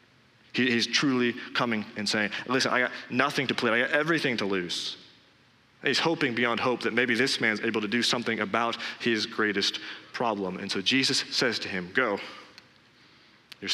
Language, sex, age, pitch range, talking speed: English, male, 30-49, 105-125 Hz, 185 wpm